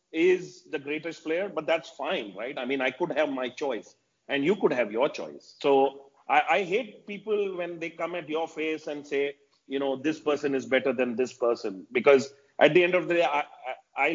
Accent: Indian